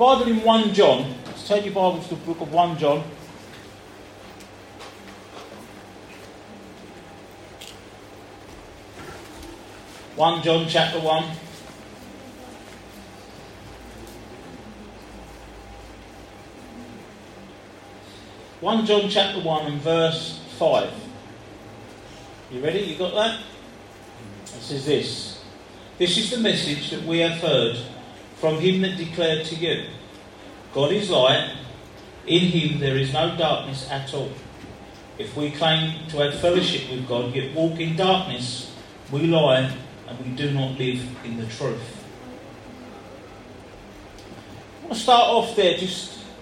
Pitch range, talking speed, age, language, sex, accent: 115-180 Hz, 110 wpm, 40-59, English, male, British